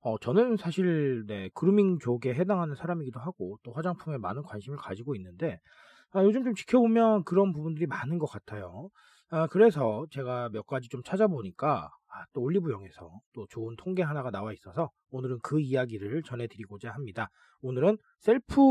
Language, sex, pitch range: Korean, male, 125-195 Hz